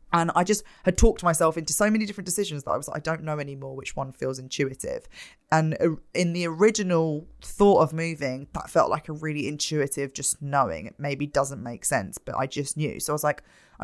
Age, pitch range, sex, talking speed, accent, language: 20-39, 140-170 Hz, female, 220 wpm, British, English